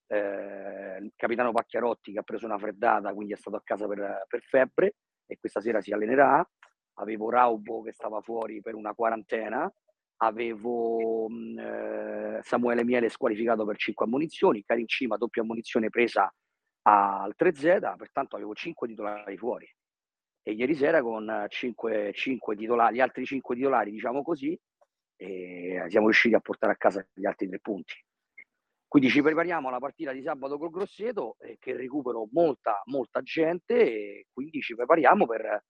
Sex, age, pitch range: male, 40-59, 110-145 Hz